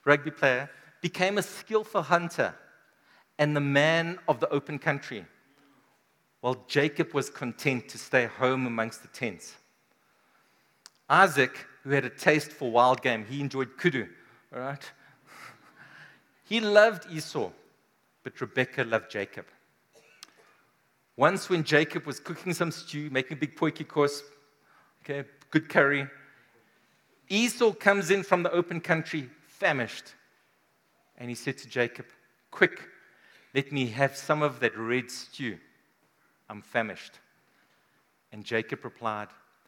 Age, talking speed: 50-69, 130 wpm